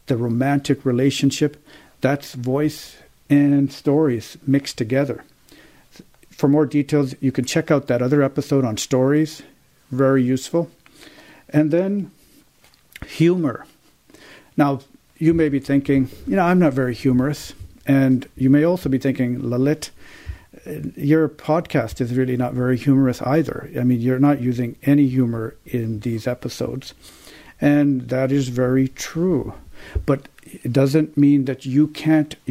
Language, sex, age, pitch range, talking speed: English, male, 50-69, 130-150 Hz, 135 wpm